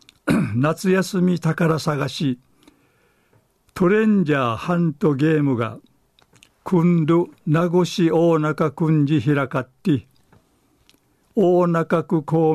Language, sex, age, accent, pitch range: Japanese, male, 60-79, native, 135-170 Hz